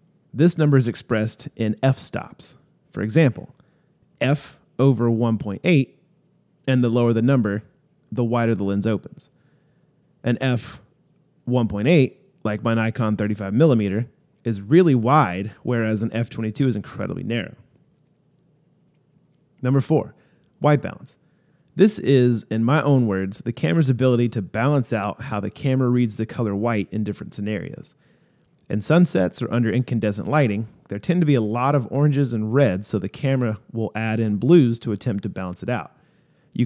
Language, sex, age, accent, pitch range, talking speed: English, male, 30-49, American, 110-155 Hz, 155 wpm